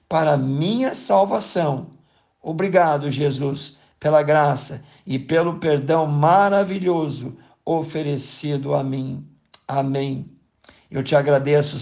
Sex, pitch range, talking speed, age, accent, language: male, 135-160 Hz, 90 wpm, 50-69, Brazilian, Portuguese